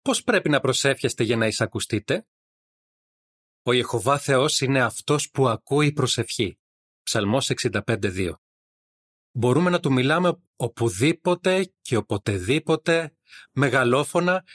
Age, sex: 30-49, male